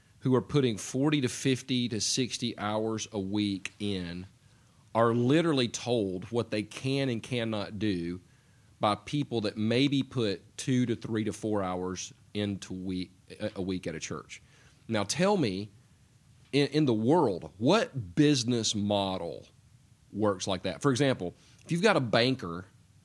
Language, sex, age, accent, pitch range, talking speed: English, male, 40-59, American, 105-130 Hz, 155 wpm